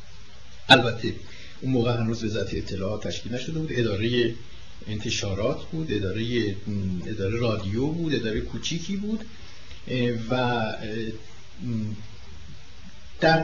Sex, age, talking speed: male, 60-79, 95 wpm